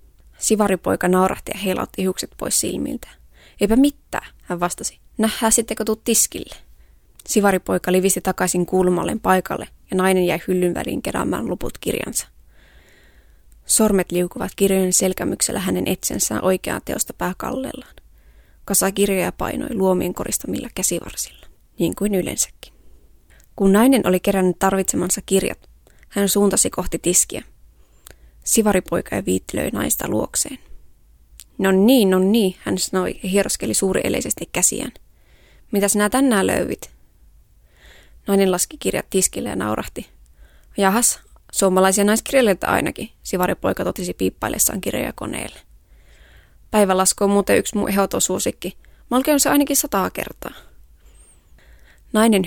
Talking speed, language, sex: 120 wpm, Finnish, female